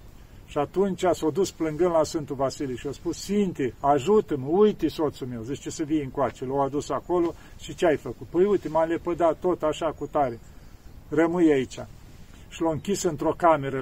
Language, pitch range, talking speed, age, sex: Romanian, 135-170 Hz, 190 wpm, 50-69, male